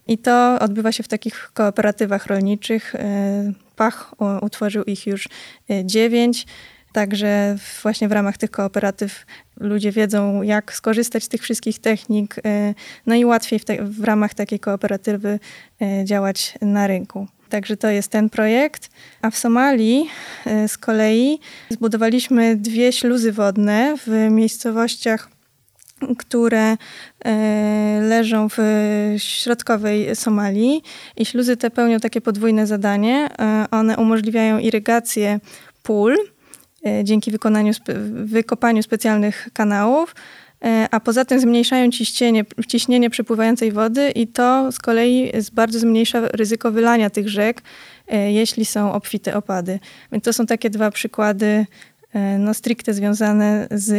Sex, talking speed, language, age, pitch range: female, 120 wpm, Polish, 20-39, 210-230 Hz